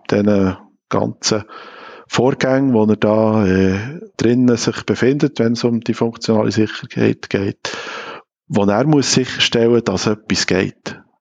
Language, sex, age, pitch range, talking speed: German, male, 50-69, 100-130 Hz, 145 wpm